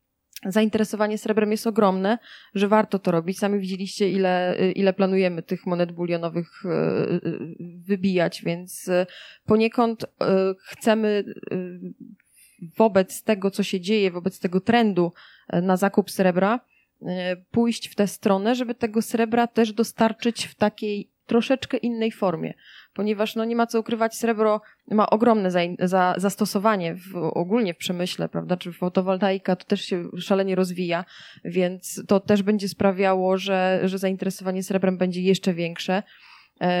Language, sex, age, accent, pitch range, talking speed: Polish, female, 20-39, native, 180-215 Hz, 135 wpm